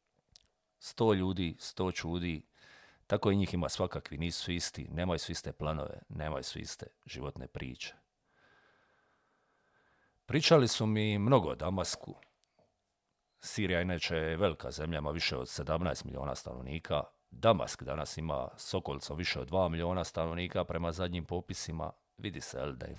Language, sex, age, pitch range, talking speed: Croatian, male, 50-69, 80-100 Hz, 135 wpm